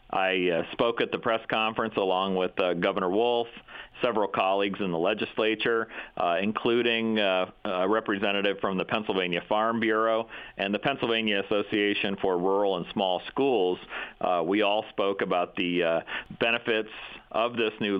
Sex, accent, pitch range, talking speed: male, American, 95-115 Hz, 155 wpm